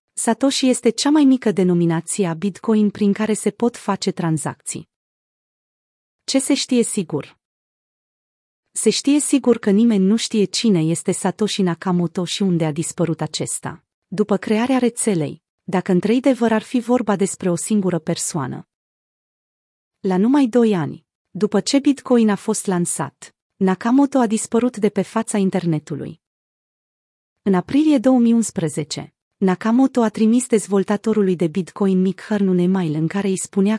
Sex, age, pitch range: female, 30-49, 180-230 Hz